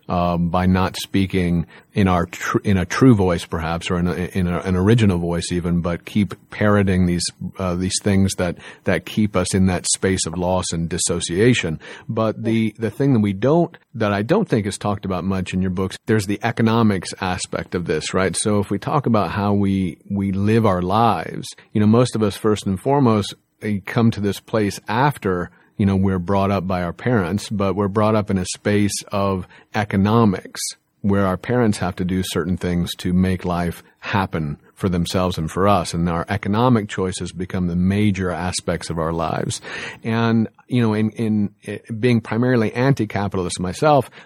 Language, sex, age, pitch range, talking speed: English, male, 40-59, 90-110 Hz, 195 wpm